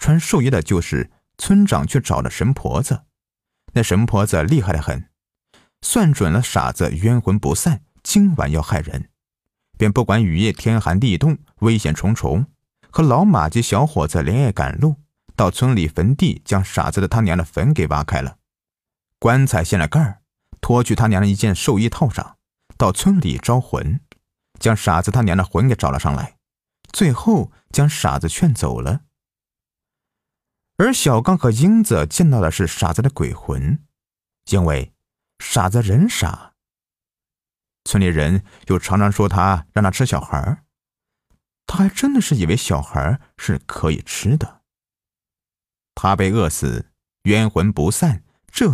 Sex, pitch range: male, 90-135 Hz